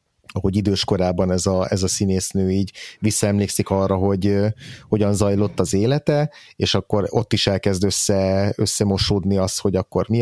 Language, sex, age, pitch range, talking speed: Hungarian, male, 30-49, 95-110 Hz, 160 wpm